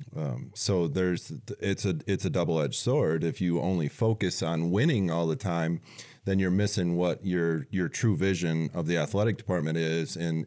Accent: American